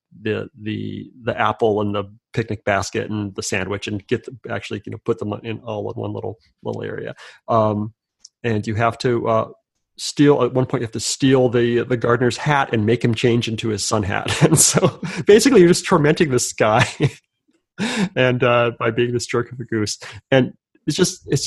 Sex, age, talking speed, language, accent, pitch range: male, 30-49, 205 wpm, English, American, 110-135 Hz